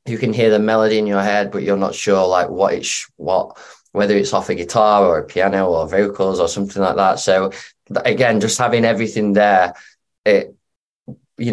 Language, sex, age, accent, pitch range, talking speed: English, male, 20-39, British, 100-120 Hz, 205 wpm